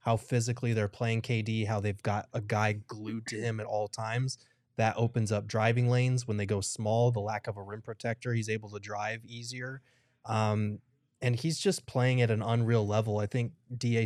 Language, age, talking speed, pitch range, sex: English, 20-39, 205 wpm, 105-120 Hz, male